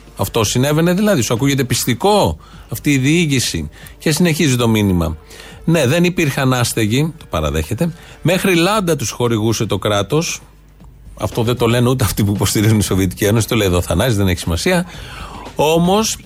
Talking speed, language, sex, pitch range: 165 wpm, Greek, male, 115-155 Hz